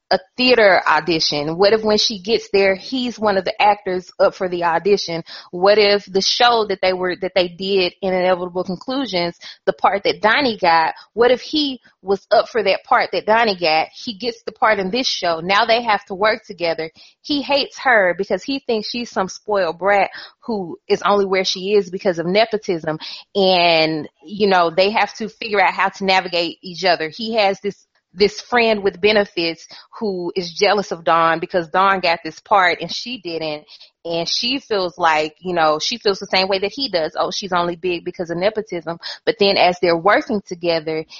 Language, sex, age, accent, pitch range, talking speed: English, female, 20-39, American, 175-210 Hz, 200 wpm